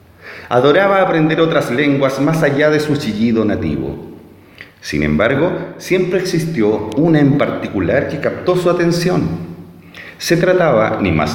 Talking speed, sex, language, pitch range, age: 130 wpm, male, Spanish, 100-165 Hz, 40-59